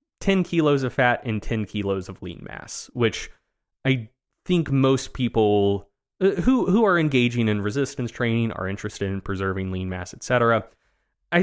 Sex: male